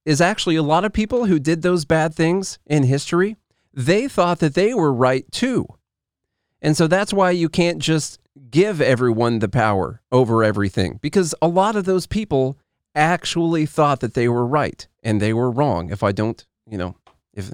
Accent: American